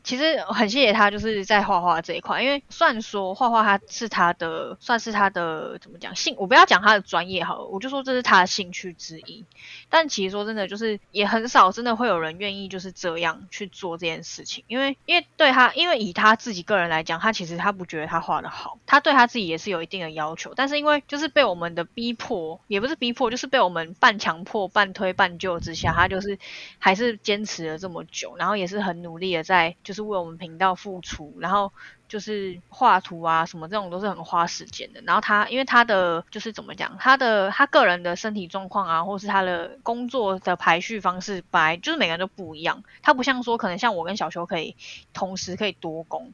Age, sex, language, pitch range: 20-39, female, Chinese, 175-225 Hz